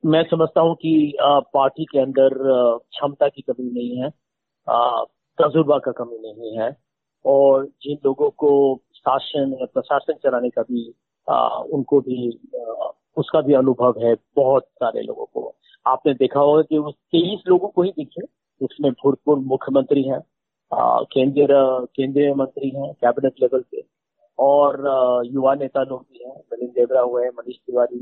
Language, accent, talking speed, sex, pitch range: Hindi, native, 150 wpm, male, 130-155 Hz